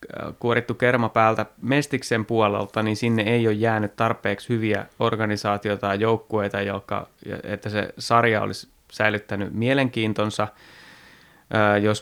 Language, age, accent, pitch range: Finnish, 30-49, native, 105-120 Hz